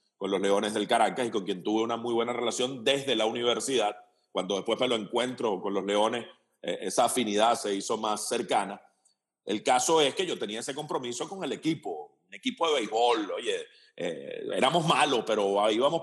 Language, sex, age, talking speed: Spanish, male, 40-59, 195 wpm